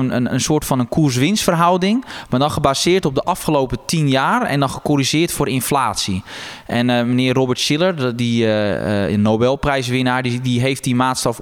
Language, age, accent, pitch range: Dutch, 20-39, Dutch, 110-135 Hz